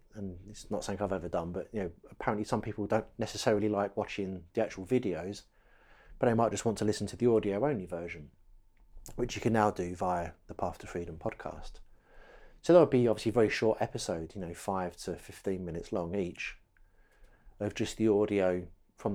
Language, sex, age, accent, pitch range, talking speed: English, male, 30-49, British, 95-115 Hz, 205 wpm